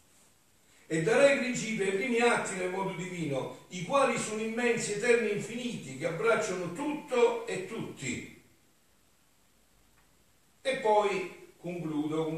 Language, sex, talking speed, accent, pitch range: Italian, male, 115 wpm, native, 110-170 Hz